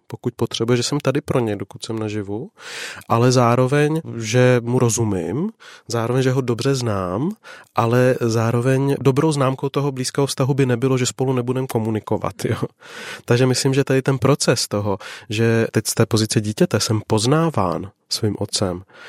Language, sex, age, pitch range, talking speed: Czech, male, 30-49, 110-130 Hz, 155 wpm